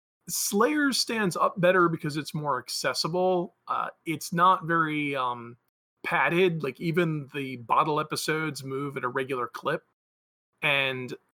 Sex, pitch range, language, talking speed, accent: male, 125-165 Hz, English, 130 wpm, American